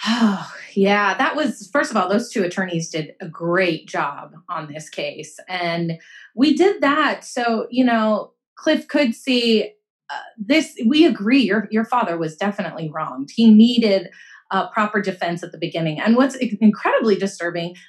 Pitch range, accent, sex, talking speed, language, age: 190-255 Hz, American, female, 170 wpm, English, 30-49